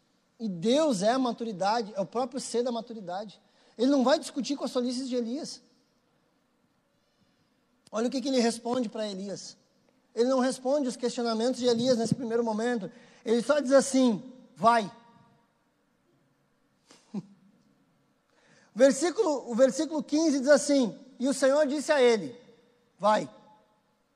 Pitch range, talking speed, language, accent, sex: 200-260 Hz, 135 wpm, Portuguese, Brazilian, male